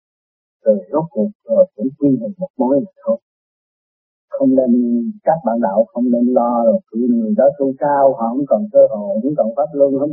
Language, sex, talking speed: Vietnamese, male, 200 wpm